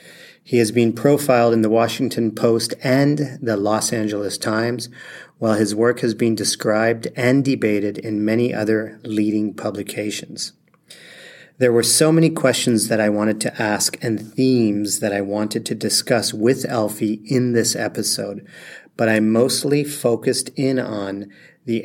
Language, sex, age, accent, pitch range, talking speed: English, male, 40-59, American, 110-125 Hz, 150 wpm